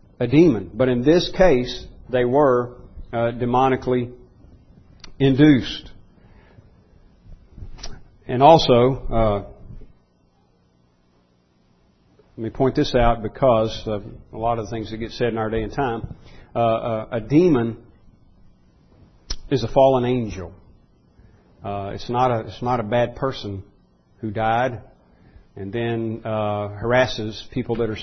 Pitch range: 110-135 Hz